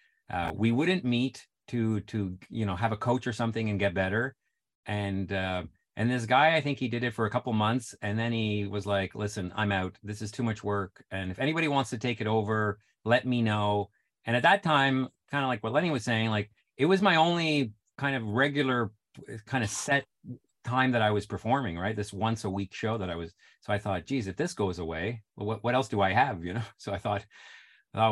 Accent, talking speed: American, 235 wpm